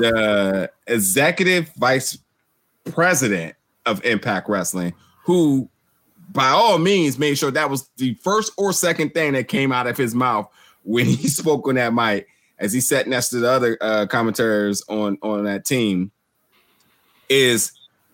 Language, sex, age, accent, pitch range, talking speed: English, male, 20-39, American, 115-155 Hz, 150 wpm